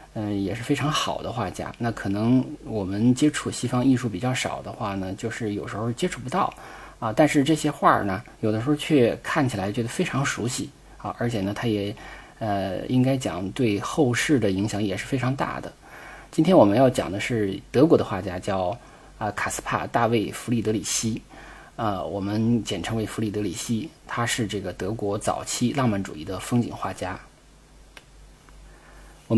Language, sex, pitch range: Chinese, male, 105-125 Hz